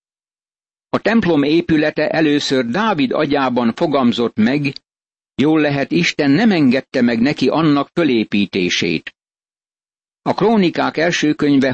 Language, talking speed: Hungarian, 105 wpm